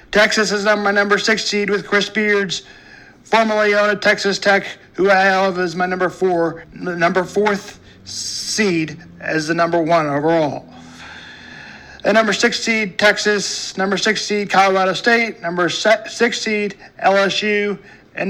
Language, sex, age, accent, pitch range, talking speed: English, male, 40-59, American, 175-210 Hz, 140 wpm